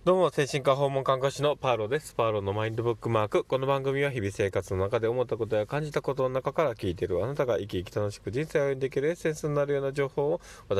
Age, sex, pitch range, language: 20-39, male, 95-135 Hz, Japanese